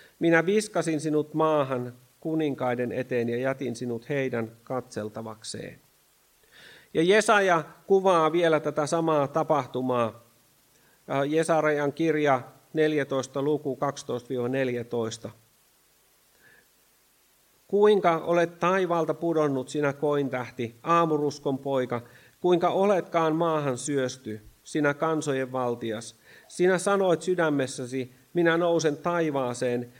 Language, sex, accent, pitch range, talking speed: Finnish, male, native, 125-165 Hz, 90 wpm